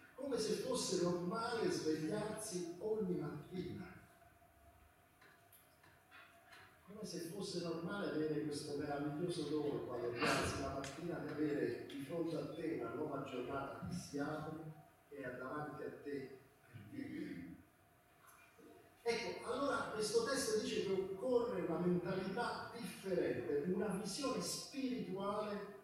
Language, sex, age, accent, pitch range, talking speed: Italian, male, 40-59, native, 145-205 Hz, 110 wpm